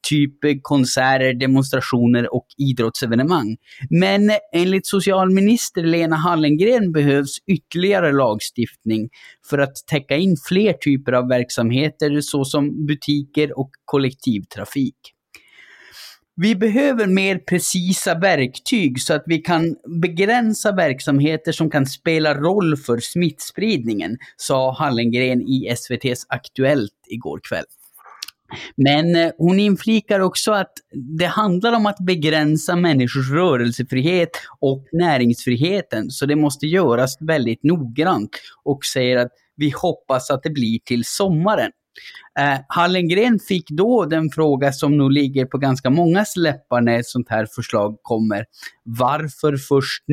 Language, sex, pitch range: Swedish, male, 130-180 Hz